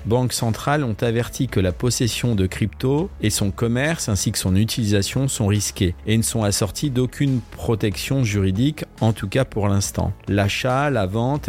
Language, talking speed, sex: French, 170 wpm, male